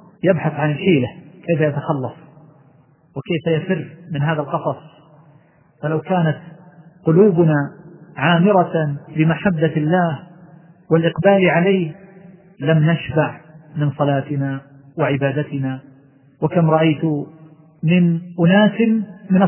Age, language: 40-59, Arabic